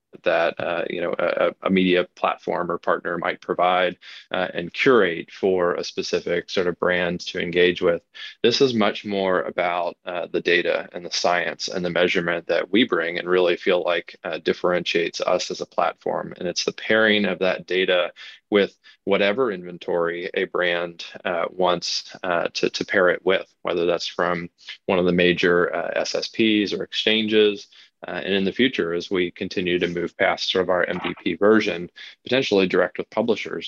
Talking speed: 180 wpm